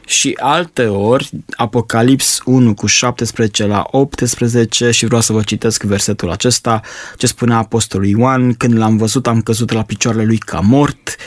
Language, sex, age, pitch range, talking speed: Romanian, male, 20-39, 110-125 Hz, 160 wpm